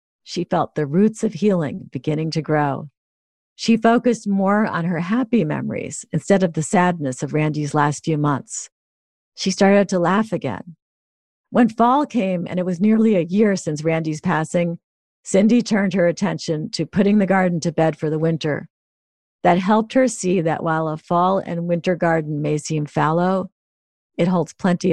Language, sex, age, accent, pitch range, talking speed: English, female, 50-69, American, 160-215 Hz, 175 wpm